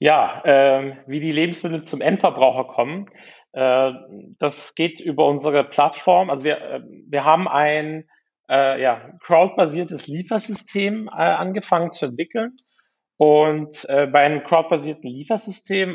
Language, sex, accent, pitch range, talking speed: German, male, German, 135-185 Hz, 125 wpm